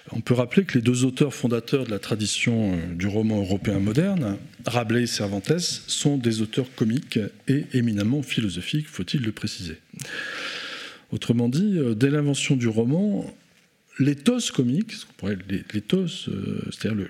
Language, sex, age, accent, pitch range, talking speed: French, male, 40-59, French, 110-150 Hz, 135 wpm